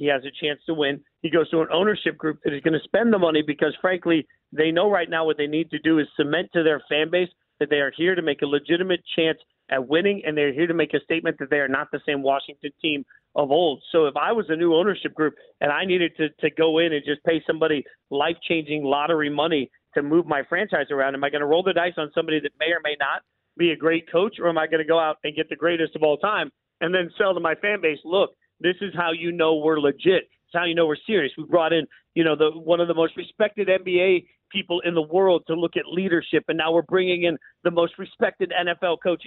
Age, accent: 40-59, American